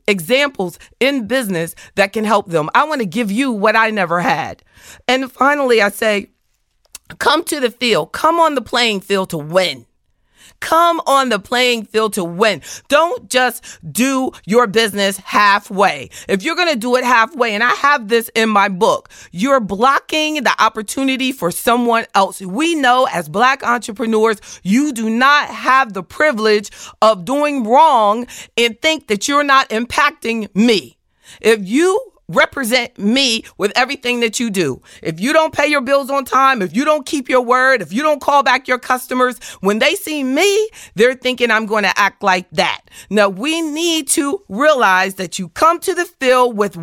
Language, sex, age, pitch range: English, female, 40-59, 200-270 Hz